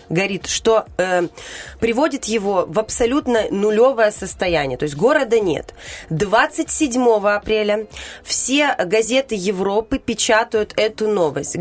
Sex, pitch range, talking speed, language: female, 180-225 Hz, 110 wpm, Russian